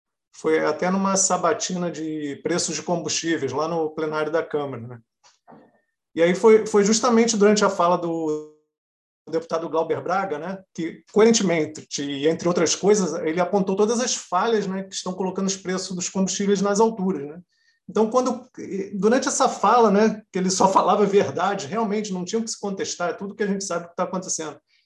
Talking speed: 185 wpm